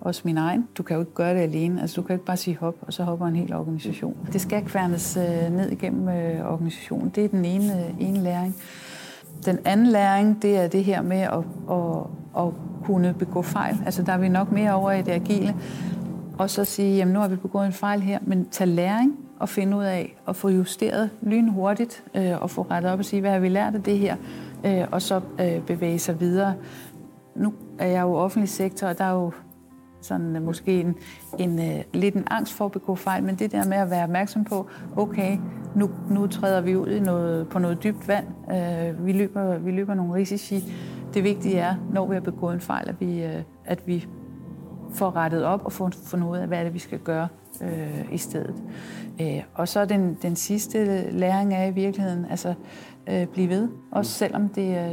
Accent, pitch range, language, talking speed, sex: native, 175-200 Hz, Danish, 220 wpm, female